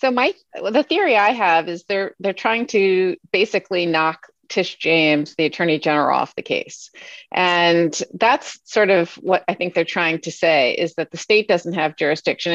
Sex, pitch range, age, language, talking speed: female, 165-200 Hz, 40-59, English, 190 wpm